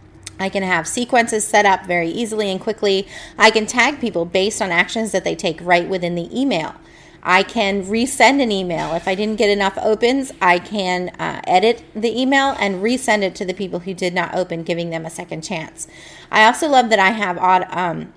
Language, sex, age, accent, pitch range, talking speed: English, female, 30-49, American, 185-230 Hz, 210 wpm